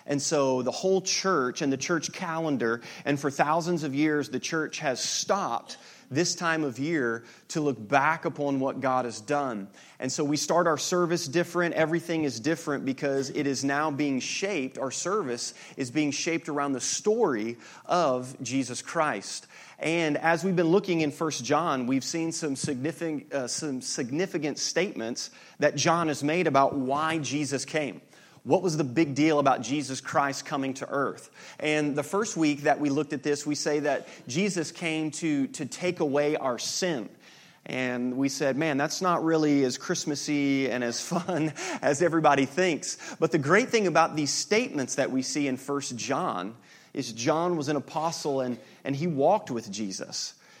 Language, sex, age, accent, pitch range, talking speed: English, male, 30-49, American, 135-165 Hz, 175 wpm